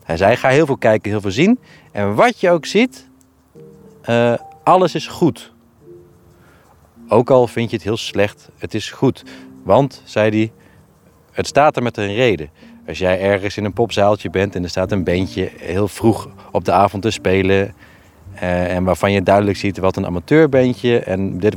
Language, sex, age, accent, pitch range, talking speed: Dutch, male, 30-49, Dutch, 90-115 Hz, 190 wpm